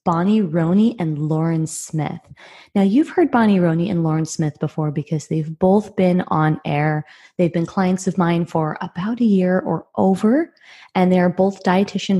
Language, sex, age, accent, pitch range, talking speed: English, female, 20-39, American, 155-195 Hz, 170 wpm